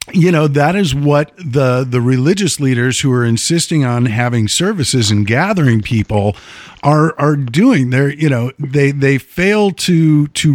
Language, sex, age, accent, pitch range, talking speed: English, male, 50-69, American, 120-165 Hz, 165 wpm